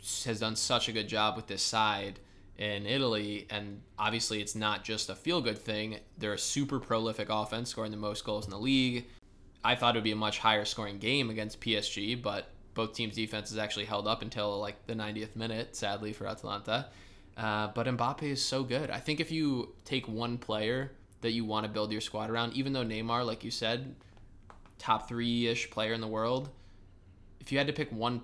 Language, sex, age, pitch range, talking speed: English, male, 20-39, 105-120 Hz, 205 wpm